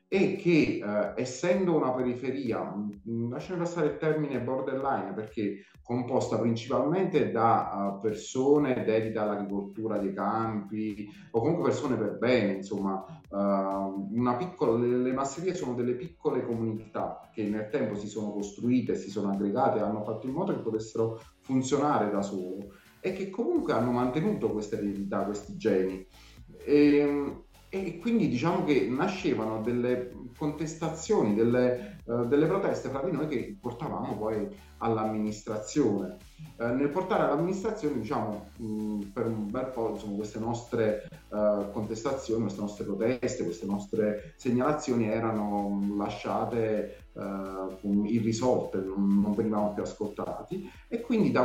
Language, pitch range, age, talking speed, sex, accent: Italian, 105-135 Hz, 30-49, 130 wpm, male, native